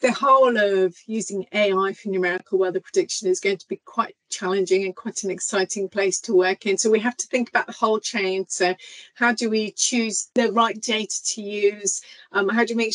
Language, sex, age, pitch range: English, female, 40-59, 190-235 Hz